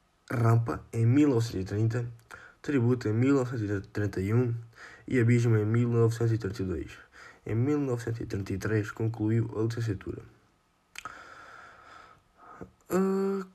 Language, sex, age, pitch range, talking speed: Portuguese, male, 20-39, 105-120 Hz, 65 wpm